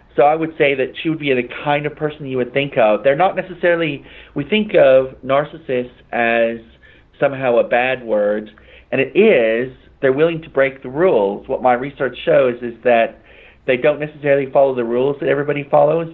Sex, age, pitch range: male, 40-59, 115-140 Hz